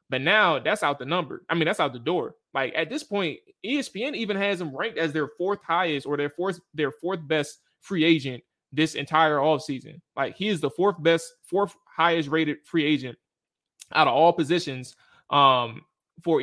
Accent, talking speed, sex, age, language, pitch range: American, 195 wpm, male, 20-39, English, 140-165 Hz